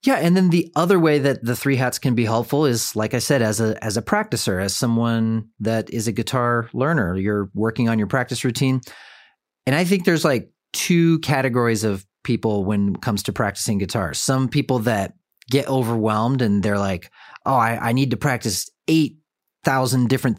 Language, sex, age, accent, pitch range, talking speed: English, male, 30-49, American, 110-135 Hz, 195 wpm